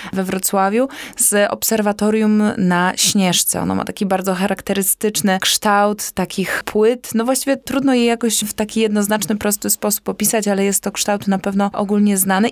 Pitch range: 185-225 Hz